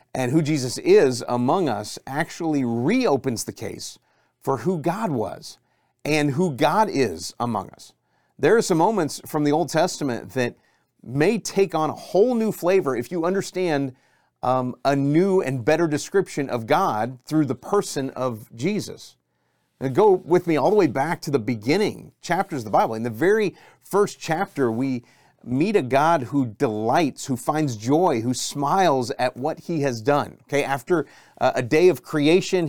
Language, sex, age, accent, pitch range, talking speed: English, male, 40-59, American, 130-170 Hz, 170 wpm